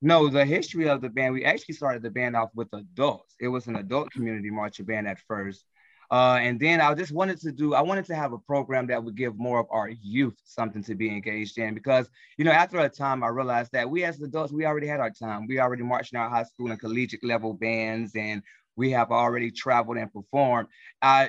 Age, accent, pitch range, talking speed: 20-39, American, 115-140 Hz, 240 wpm